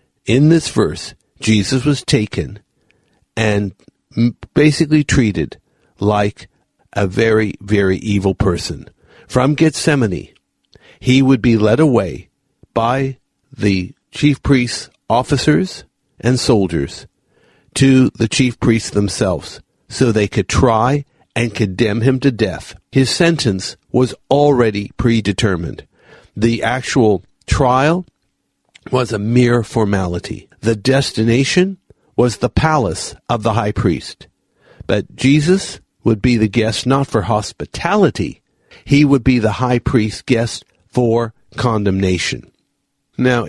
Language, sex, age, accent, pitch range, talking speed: English, male, 60-79, American, 105-135 Hz, 115 wpm